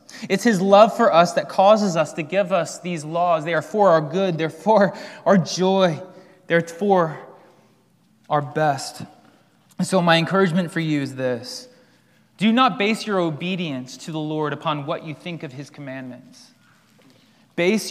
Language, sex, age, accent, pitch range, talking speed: English, male, 20-39, American, 150-205 Hz, 165 wpm